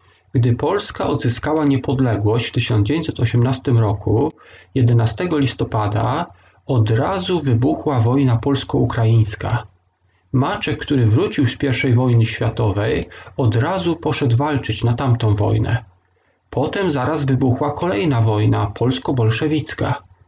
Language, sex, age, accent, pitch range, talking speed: Polish, male, 40-59, native, 110-145 Hz, 100 wpm